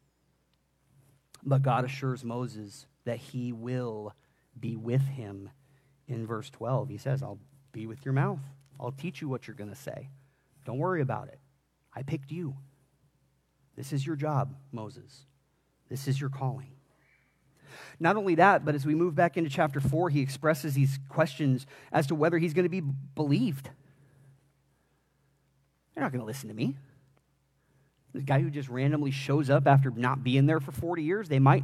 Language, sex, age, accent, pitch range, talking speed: English, male, 30-49, American, 135-145 Hz, 170 wpm